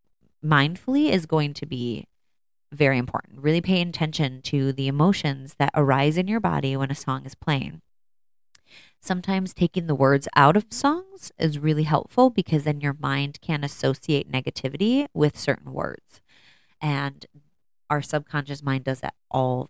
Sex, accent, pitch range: female, American, 135-175 Hz